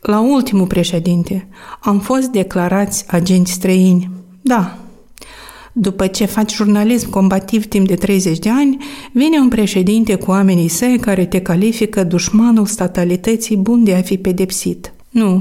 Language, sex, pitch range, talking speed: Romanian, female, 185-220 Hz, 140 wpm